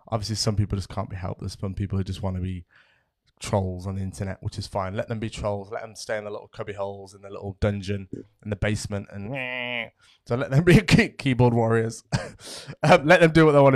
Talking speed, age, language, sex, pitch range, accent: 235 wpm, 20-39, English, male, 105-135 Hz, British